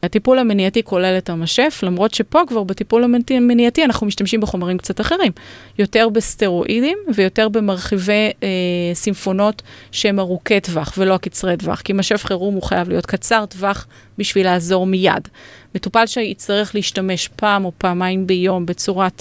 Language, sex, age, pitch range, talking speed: Hebrew, female, 30-49, 185-225 Hz, 145 wpm